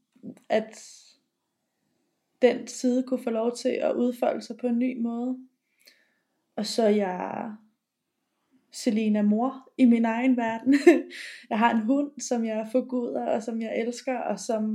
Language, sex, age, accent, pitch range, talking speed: Danish, female, 20-39, native, 220-255 Hz, 150 wpm